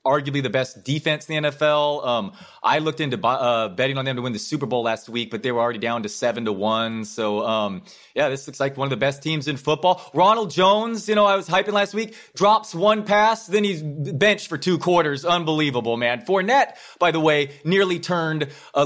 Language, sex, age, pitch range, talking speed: English, male, 30-49, 120-155 Hz, 225 wpm